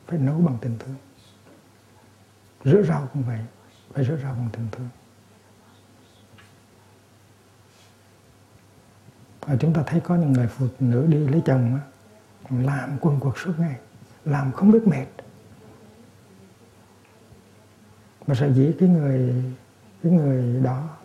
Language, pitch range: Vietnamese, 110-135 Hz